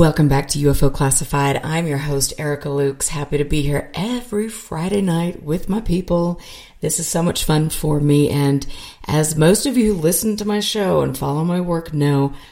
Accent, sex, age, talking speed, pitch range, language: American, female, 40-59, 200 wpm, 135-155 Hz, English